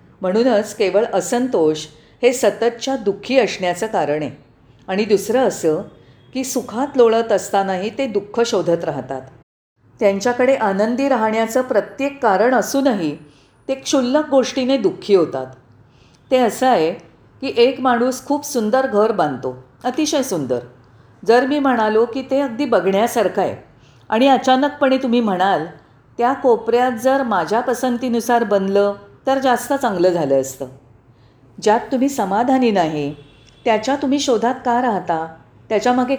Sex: female